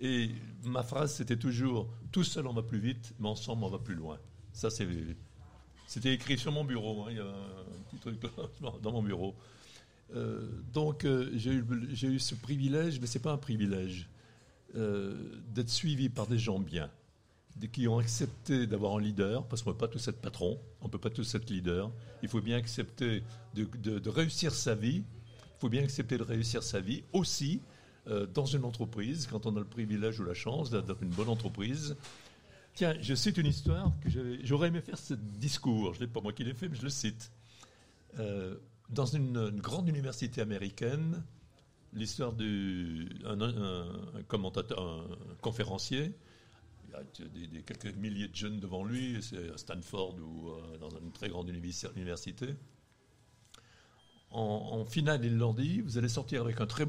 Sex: male